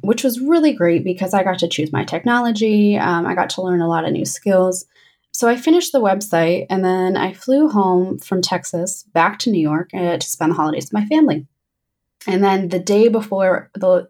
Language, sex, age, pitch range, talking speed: English, female, 20-39, 170-210 Hz, 220 wpm